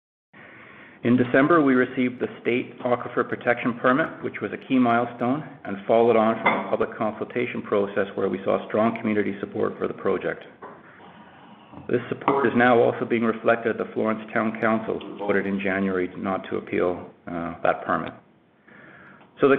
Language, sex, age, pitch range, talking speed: English, male, 50-69, 100-120 Hz, 165 wpm